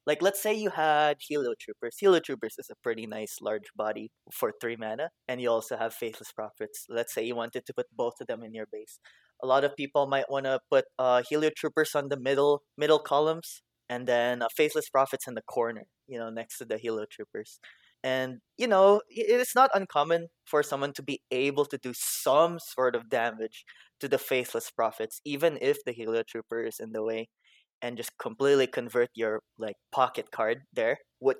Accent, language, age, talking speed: Filipino, English, 20-39, 205 wpm